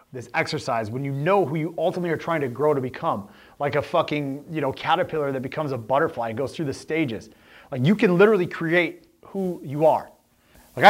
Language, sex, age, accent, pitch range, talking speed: English, male, 30-49, American, 115-160 Hz, 210 wpm